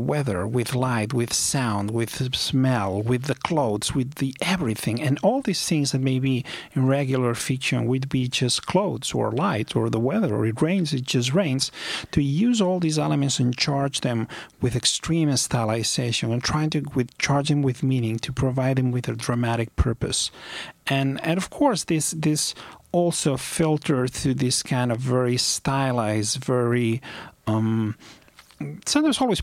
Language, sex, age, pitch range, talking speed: English, male, 40-59, 120-155 Hz, 170 wpm